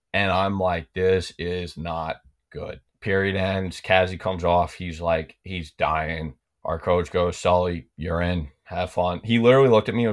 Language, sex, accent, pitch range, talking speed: English, male, American, 90-105 Hz, 180 wpm